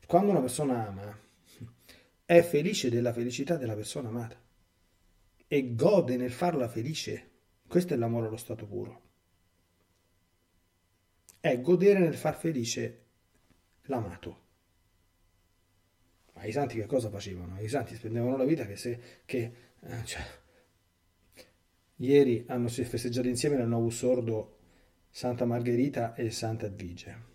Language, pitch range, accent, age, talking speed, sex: Italian, 85-135 Hz, native, 30-49, 115 wpm, male